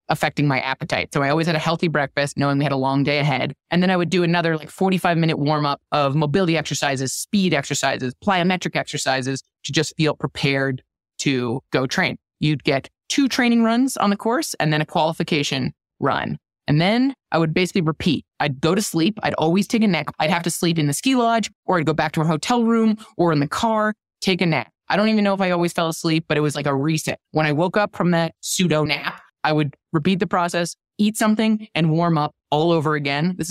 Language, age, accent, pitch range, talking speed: English, 20-39, American, 145-180 Hz, 235 wpm